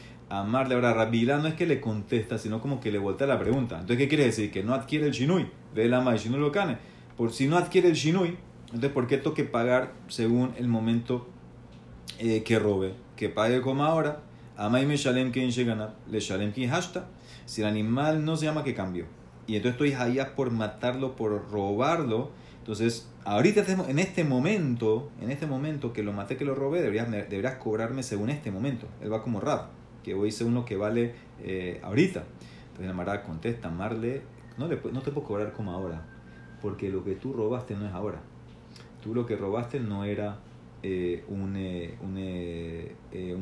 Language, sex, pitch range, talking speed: Spanish, male, 100-130 Hz, 190 wpm